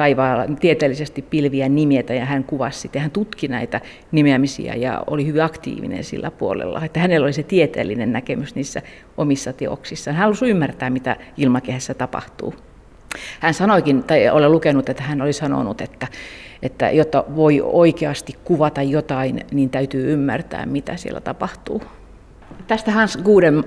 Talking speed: 145 wpm